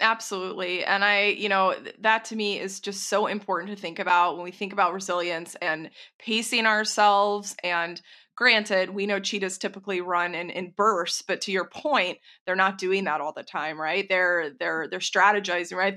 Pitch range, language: 180-210 Hz, English